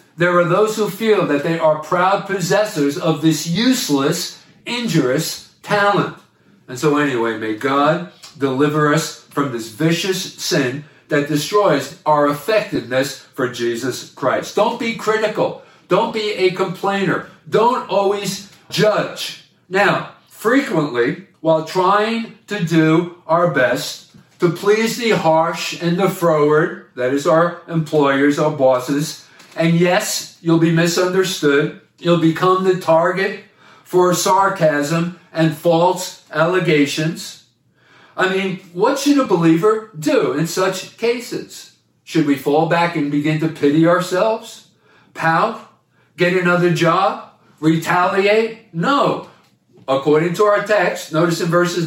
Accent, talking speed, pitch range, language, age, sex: American, 125 wpm, 150-190 Hz, English, 50-69, male